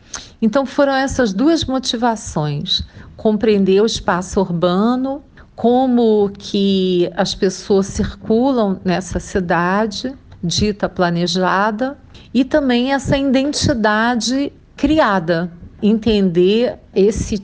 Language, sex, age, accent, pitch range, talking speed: Portuguese, female, 50-69, Brazilian, 180-240 Hz, 85 wpm